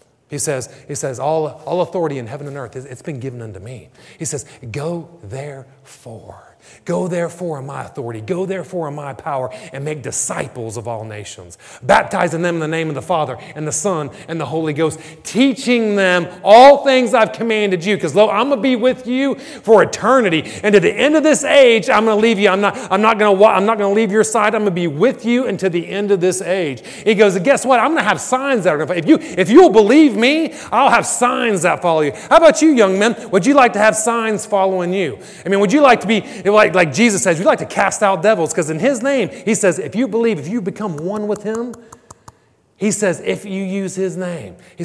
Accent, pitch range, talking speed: American, 165-230 Hz, 240 wpm